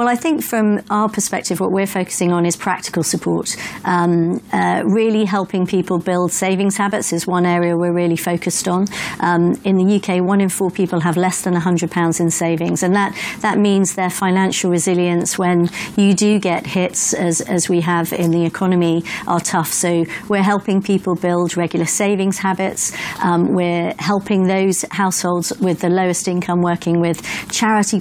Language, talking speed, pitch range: English, 180 wpm, 175-195 Hz